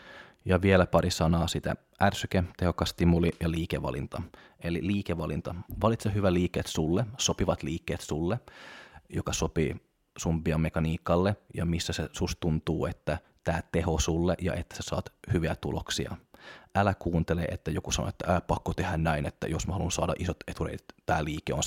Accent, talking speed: native, 165 wpm